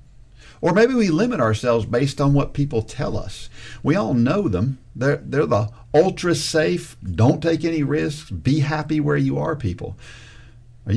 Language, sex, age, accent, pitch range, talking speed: English, male, 50-69, American, 115-155 Hz, 170 wpm